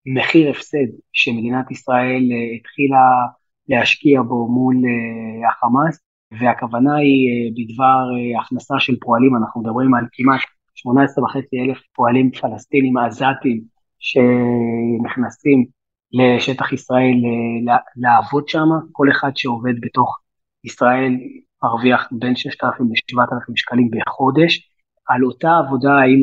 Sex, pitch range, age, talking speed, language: male, 120-135 Hz, 30-49, 105 wpm, Hebrew